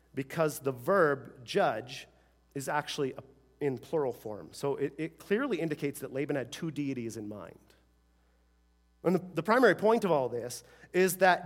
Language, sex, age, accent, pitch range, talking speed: English, male, 40-59, American, 115-155 Hz, 160 wpm